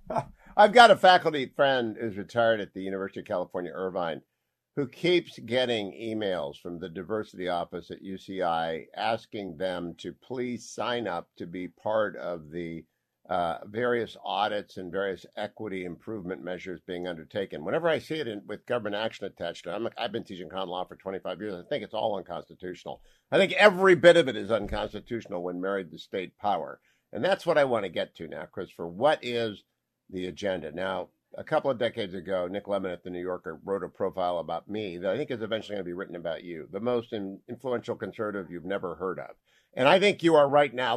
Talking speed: 200 wpm